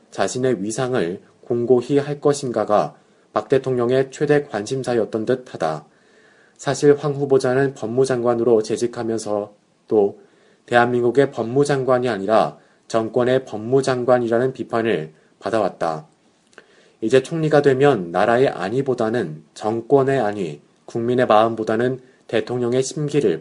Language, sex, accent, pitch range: Korean, male, native, 115-135 Hz